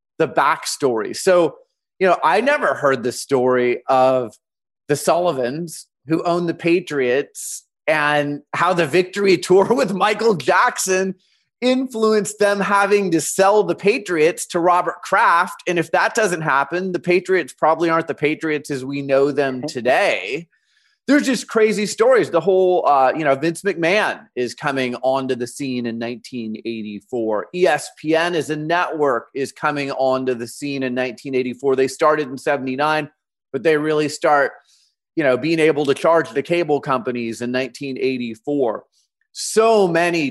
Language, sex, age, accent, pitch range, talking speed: English, male, 30-49, American, 130-180 Hz, 150 wpm